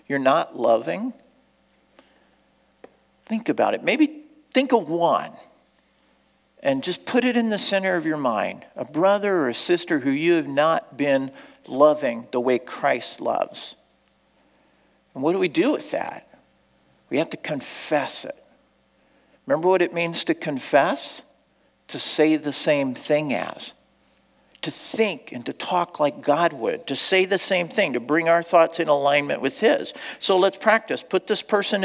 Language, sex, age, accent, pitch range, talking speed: English, male, 50-69, American, 160-255 Hz, 160 wpm